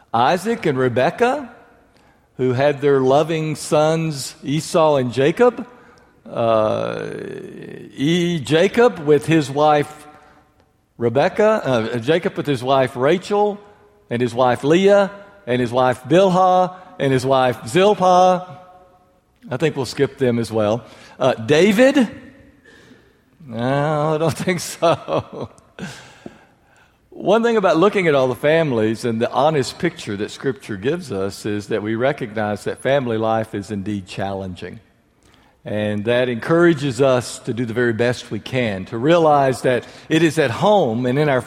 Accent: American